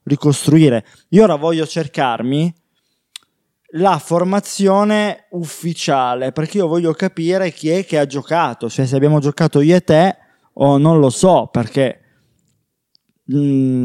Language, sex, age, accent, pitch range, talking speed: Italian, male, 20-39, native, 130-165 Hz, 130 wpm